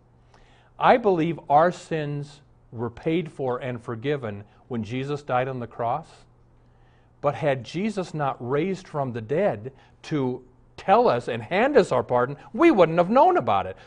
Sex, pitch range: male, 120-175 Hz